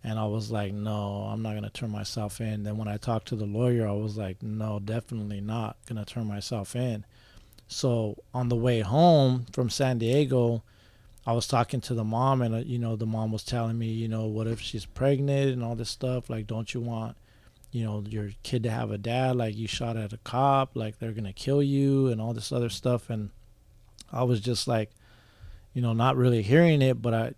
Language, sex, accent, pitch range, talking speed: English, male, American, 110-120 Hz, 230 wpm